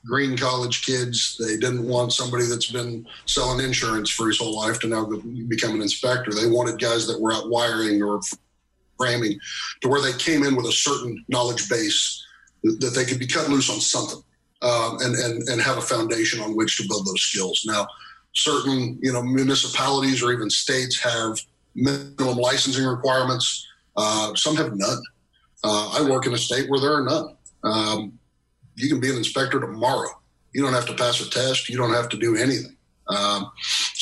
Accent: American